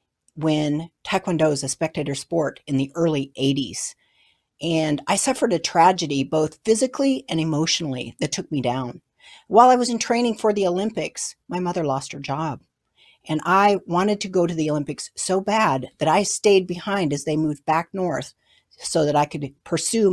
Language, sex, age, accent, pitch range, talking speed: English, female, 50-69, American, 150-205 Hz, 180 wpm